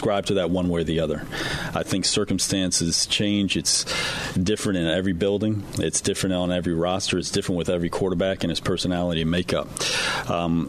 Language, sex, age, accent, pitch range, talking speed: English, male, 40-59, American, 85-95 Hz, 180 wpm